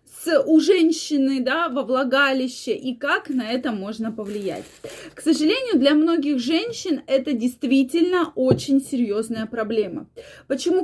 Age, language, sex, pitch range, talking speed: 20-39, Russian, female, 240-315 Hz, 120 wpm